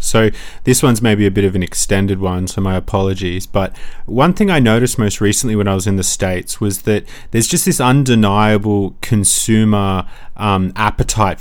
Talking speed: 185 wpm